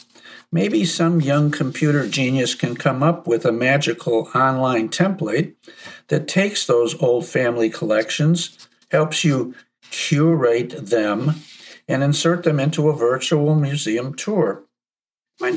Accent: American